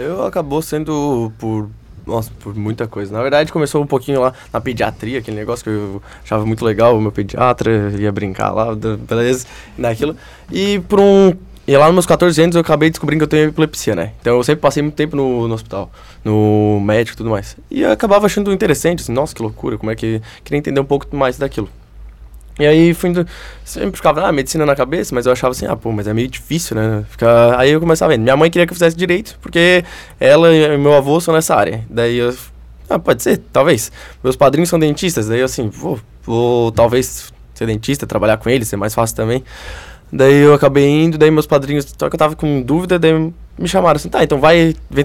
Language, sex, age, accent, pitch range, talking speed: Portuguese, male, 20-39, Brazilian, 115-155 Hz, 225 wpm